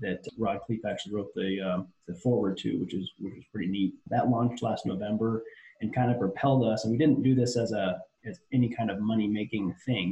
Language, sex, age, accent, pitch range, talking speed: English, male, 30-49, American, 105-125 Hz, 230 wpm